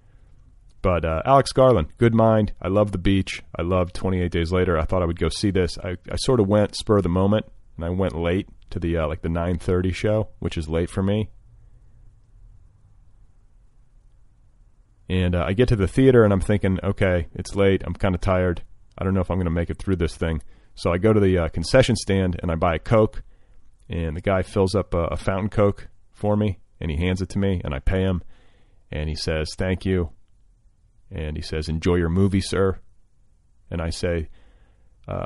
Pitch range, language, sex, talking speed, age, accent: 85-105 Hz, English, male, 215 wpm, 30-49, American